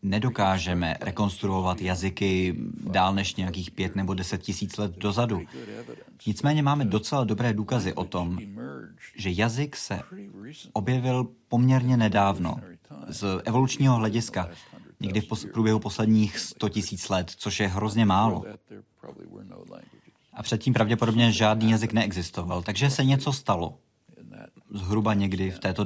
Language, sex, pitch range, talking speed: Czech, male, 95-120 Hz, 125 wpm